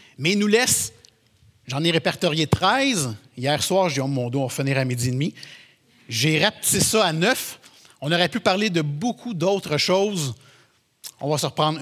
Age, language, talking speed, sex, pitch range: 50-69, French, 195 wpm, male, 130-190 Hz